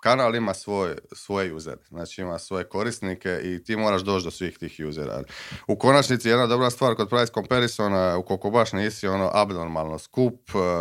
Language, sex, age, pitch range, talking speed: Croatian, male, 30-49, 90-105 Hz, 170 wpm